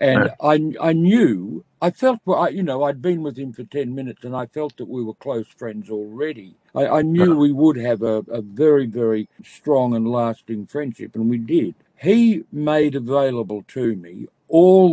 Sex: male